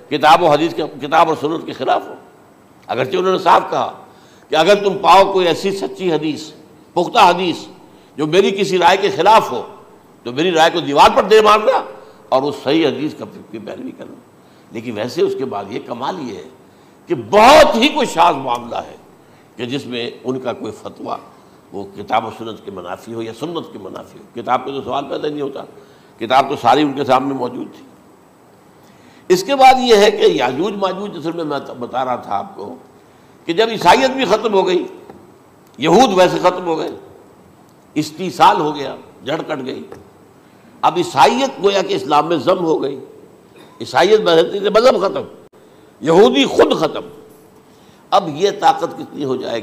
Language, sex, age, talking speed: Urdu, male, 60-79, 185 wpm